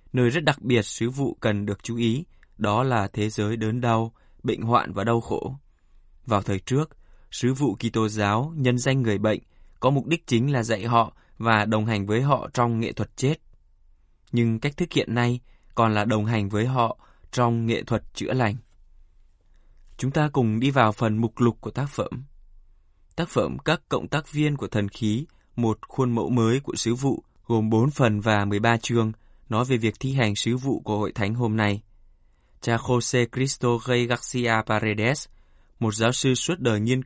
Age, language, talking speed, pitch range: 20-39, Vietnamese, 195 wpm, 105-125 Hz